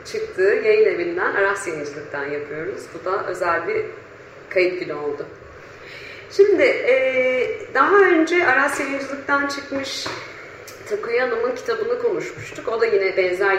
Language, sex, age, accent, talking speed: Turkish, female, 40-59, native, 120 wpm